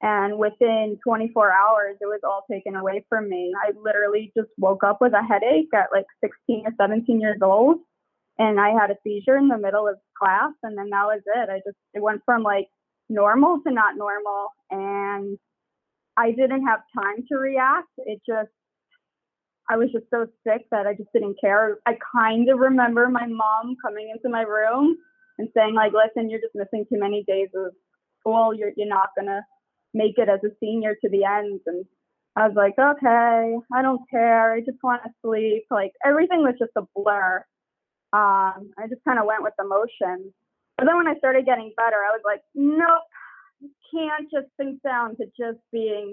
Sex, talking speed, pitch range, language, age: female, 195 wpm, 205-245 Hz, English, 20-39